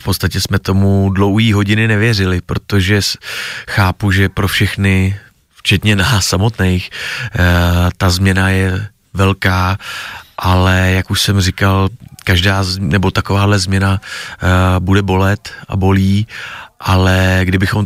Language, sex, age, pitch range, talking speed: Czech, male, 30-49, 95-105 Hz, 115 wpm